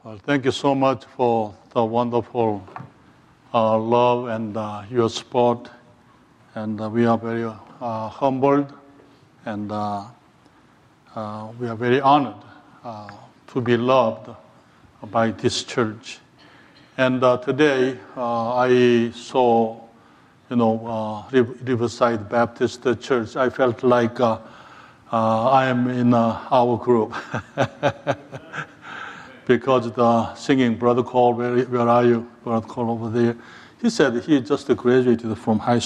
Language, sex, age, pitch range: English, male, 60-79, 115-125 Hz